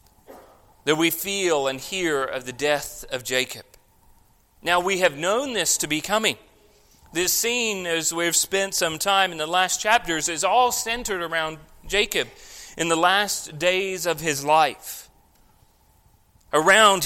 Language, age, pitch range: English, 40-59, 150-195 Hz